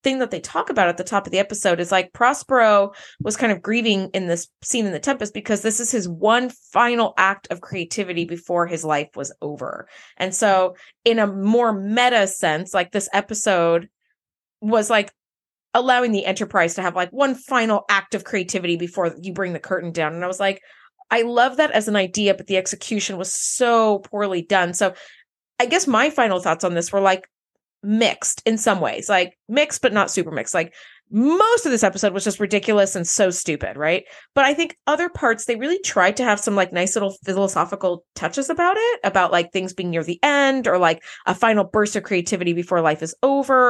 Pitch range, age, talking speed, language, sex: 180-230 Hz, 20-39, 210 wpm, English, female